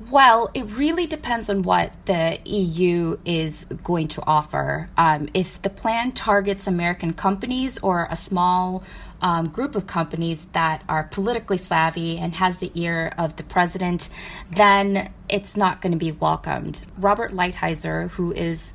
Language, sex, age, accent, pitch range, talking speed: English, female, 20-39, American, 165-195 Hz, 155 wpm